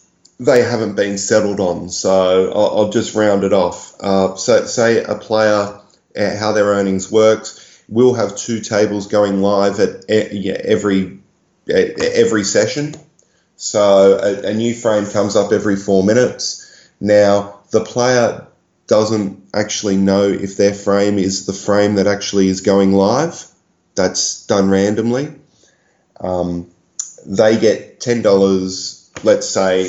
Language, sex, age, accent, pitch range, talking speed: English, male, 20-39, Australian, 95-115 Hz, 140 wpm